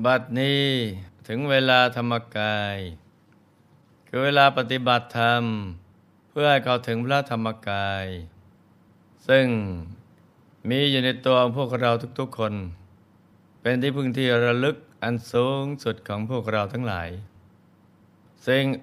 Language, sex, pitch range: Thai, male, 100-130 Hz